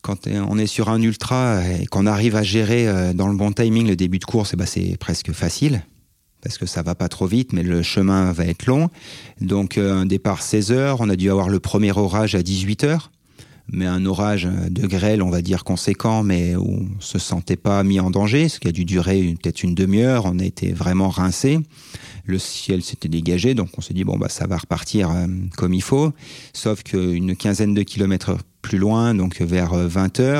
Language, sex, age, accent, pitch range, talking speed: French, male, 30-49, French, 90-110 Hz, 205 wpm